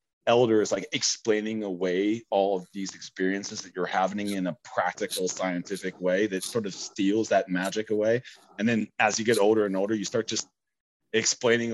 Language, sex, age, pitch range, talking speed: English, male, 30-49, 95-110 Hz, 185 wpm